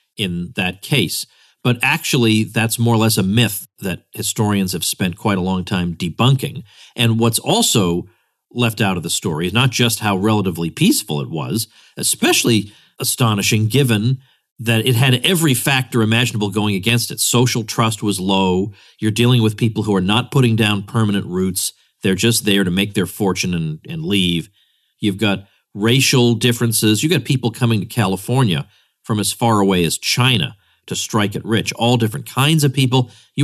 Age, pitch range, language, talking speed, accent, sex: 40-59, 100-125 Hz, English, 180 wpm, American, male